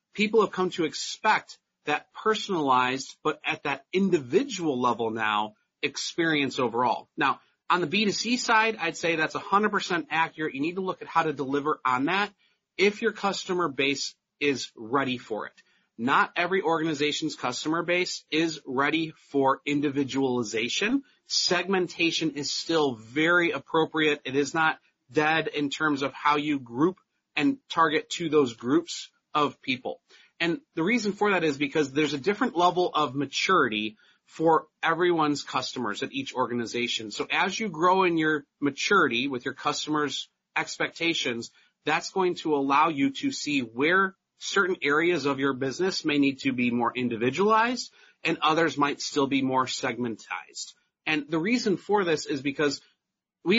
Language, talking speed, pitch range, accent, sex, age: English, 155 wpm, 140-185 Hz, American, male, 30-49